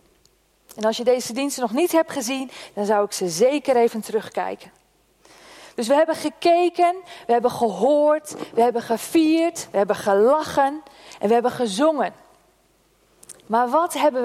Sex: female